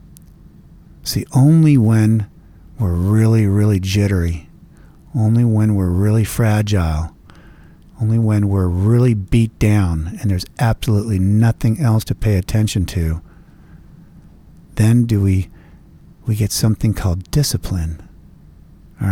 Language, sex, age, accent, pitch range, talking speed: English, male, 50-69, American, 90-110 Hz, 115 wpm